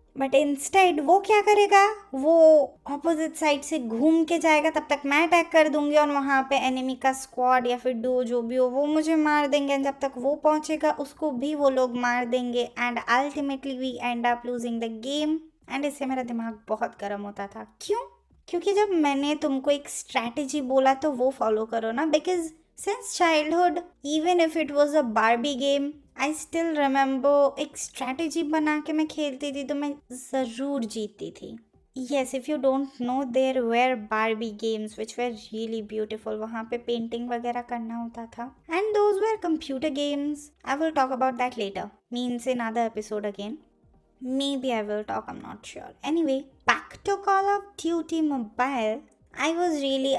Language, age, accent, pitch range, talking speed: Hindi, 20-39, native, 245-305 Hz, 185 wpm